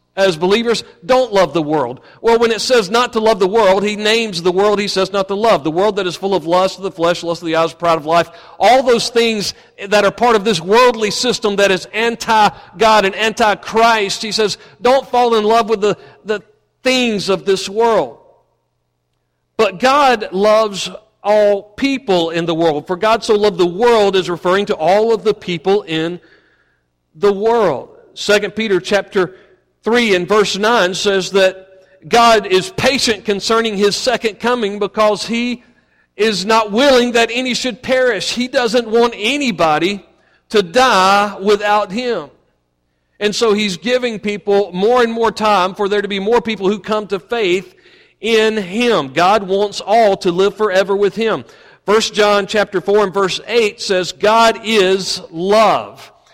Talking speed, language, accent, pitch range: 175 wpm, English, American, 190-230 Hz